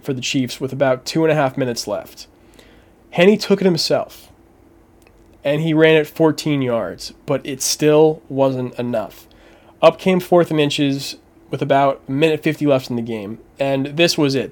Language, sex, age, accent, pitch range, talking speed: English, male, 20-39, American, 135-165 Hz, 180 wpm